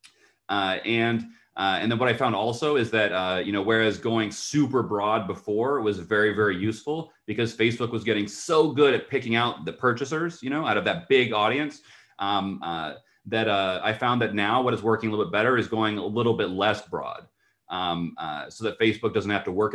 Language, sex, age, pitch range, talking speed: English, male, 30-49, 105-125 Hz, 220 wpm